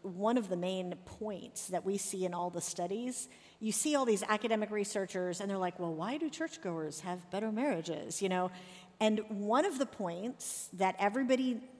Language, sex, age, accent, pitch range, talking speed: English, female, 50-69, American, 185-245 Hz, 190 wpm